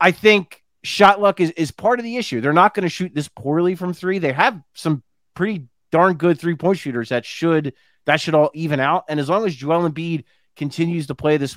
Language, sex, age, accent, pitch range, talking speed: English, male, 30-49, American, 140-180 Hz, 230 wpm